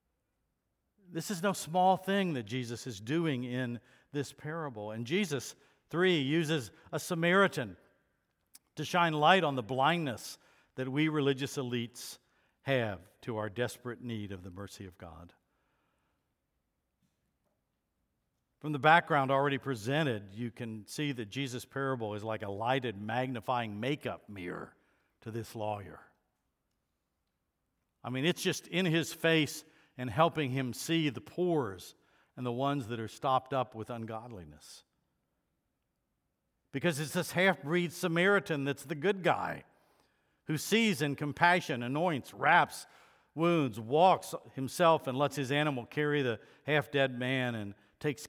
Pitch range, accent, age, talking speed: 115-155 Hz, American, 60-79, 135 wpm